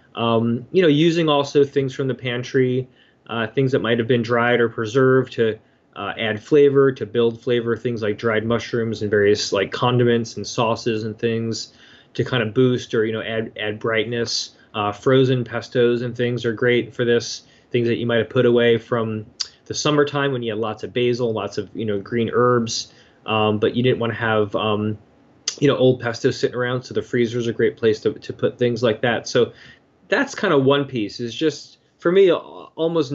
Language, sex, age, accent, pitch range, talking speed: English, male, 20-39, American, 115-135 Hz, 205 wpm